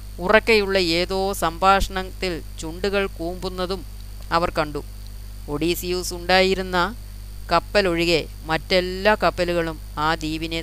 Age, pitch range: 30-49, 125-175 Hz